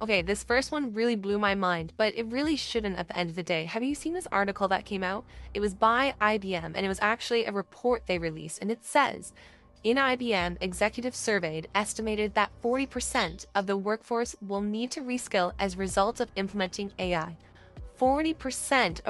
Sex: female